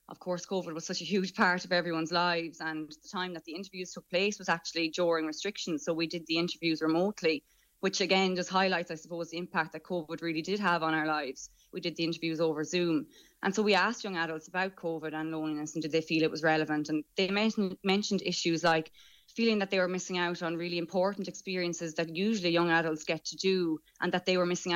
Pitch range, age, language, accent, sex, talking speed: 160-185 Hz, 20-39, English, Irish, female, 230 wpm